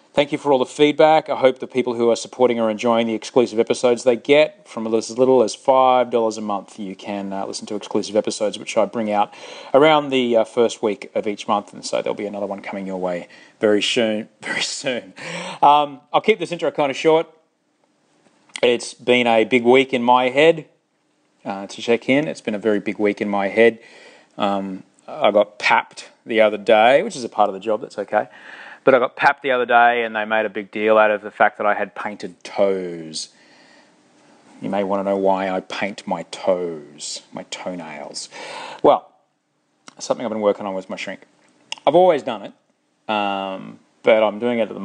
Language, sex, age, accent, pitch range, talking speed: English, male, 30-49, Australian, 105-130 Hz, 210 wpm